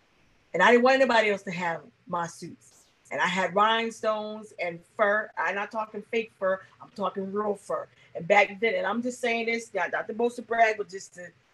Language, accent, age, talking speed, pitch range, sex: English, American, 40-59, 215 wpm, 190-230 Hz, female